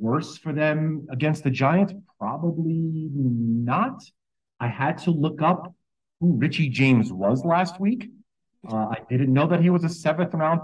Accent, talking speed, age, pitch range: American, 160 wpm, 40-59, 105-160 Hz